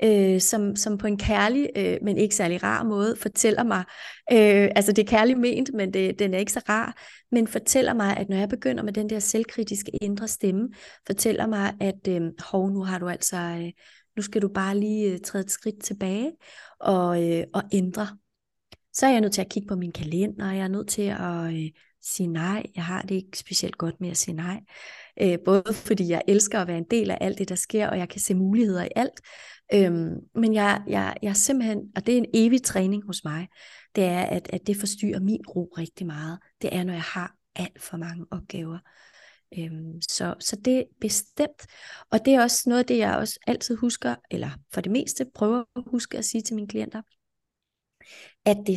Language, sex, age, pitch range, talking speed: Danish, female, 20-39, 185-220 Hz, 200 wpm